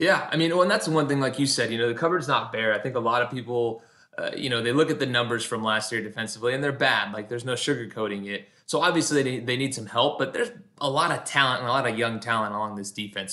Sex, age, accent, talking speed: male, 20-39, American, 295 wpm